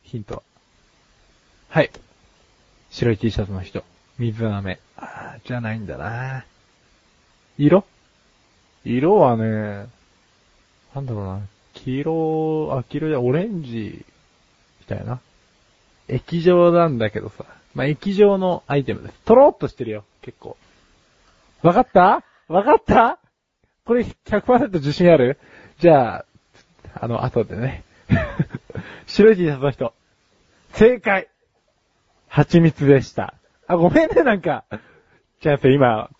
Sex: male